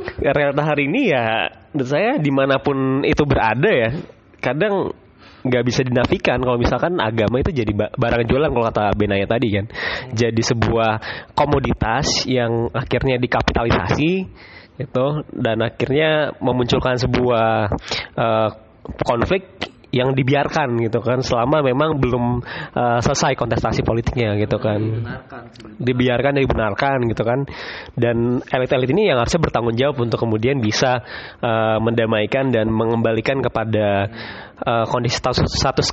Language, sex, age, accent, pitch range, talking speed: Indonesian, male, 20-39, native, 115-135 Hz, 125 wpm